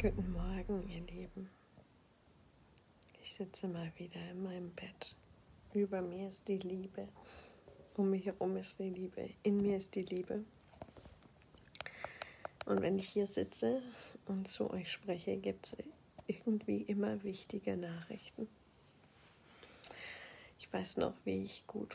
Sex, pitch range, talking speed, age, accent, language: female, 180-200 Hz, 130 wpm, 40-59, German, German